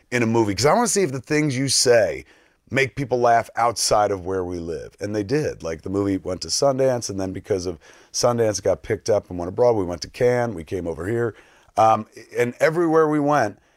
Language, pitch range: English, 100-135 Hz